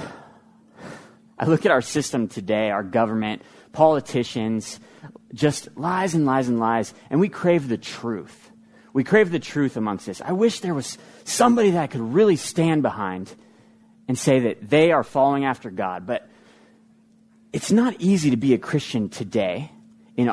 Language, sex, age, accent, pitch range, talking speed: English, male, 30-49, American, 120-190 Hz, 160 wpm